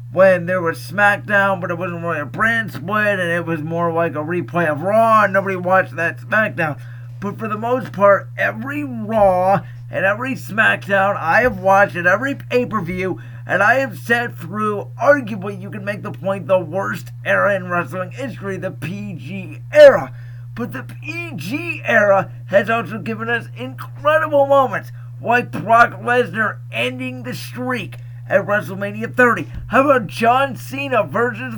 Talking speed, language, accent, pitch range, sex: 160 wpm, English, American, 120-195 Hz, male